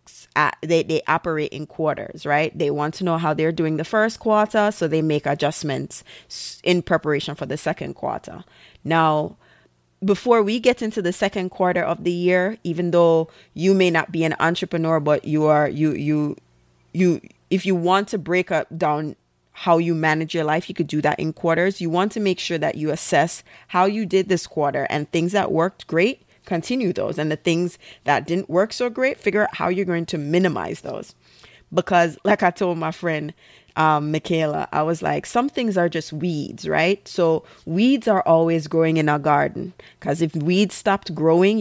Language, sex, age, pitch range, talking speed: English, female, 20-39, 155-185 Hz, 195 wpm